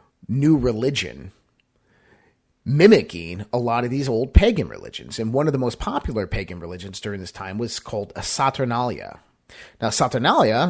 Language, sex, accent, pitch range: English, male, American, 105-135 Hz